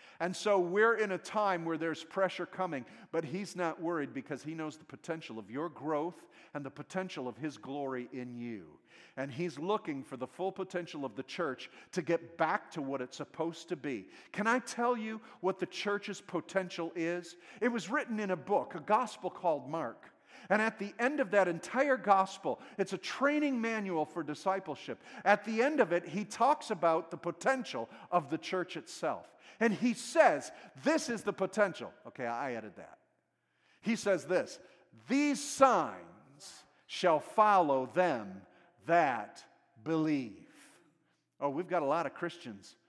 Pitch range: 155-215 Hz